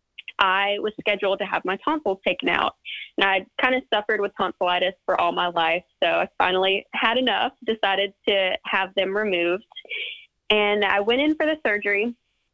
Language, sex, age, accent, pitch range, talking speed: English, female, 10-29, American, 185-225 Hz, 175 wpm